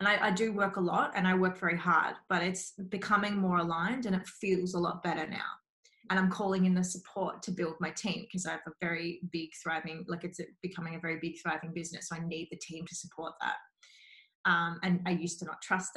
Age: 20-39